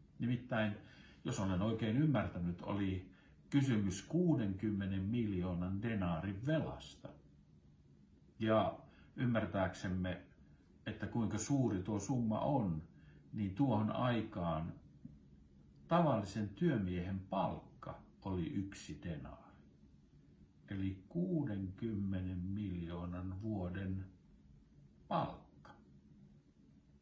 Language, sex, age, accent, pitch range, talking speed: Finnish, male, 60-79, native, 90-140 Hz, 75 wpm